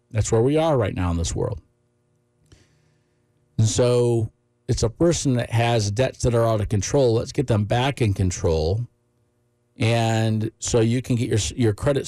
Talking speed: 180 wpm